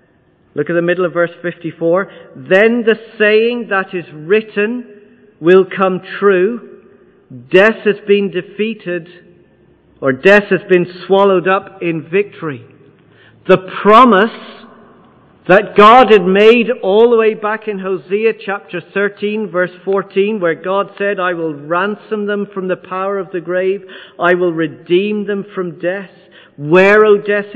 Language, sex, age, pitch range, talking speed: English, male, 50-69, 180-210 Hz, 145 wpm